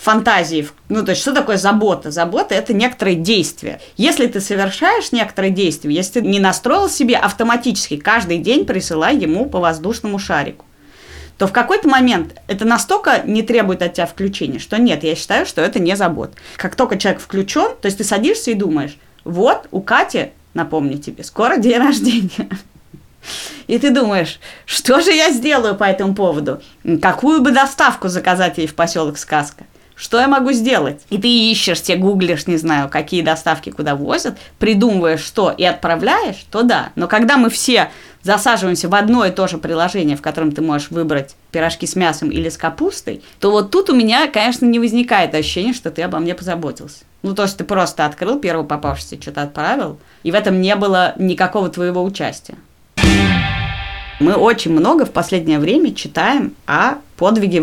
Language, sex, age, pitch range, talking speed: Russian, female, 30-49, 165-240 Hz, 175 wpm